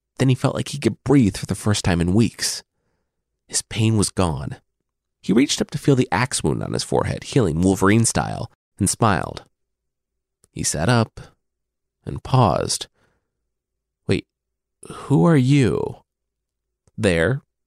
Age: 30-49